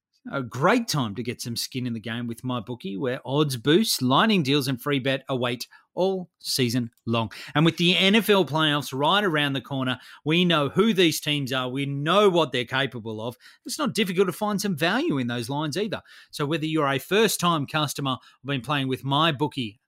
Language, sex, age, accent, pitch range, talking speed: English, male, 30-49, Australian, 130-160 Hz, 210 wpm